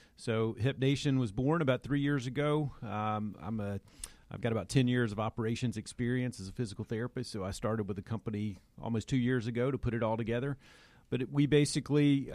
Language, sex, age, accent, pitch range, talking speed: English, male, 40-59, American, 105-125 Hz, 210 wpm